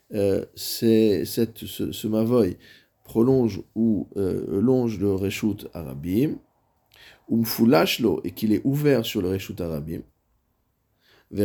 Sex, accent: male, French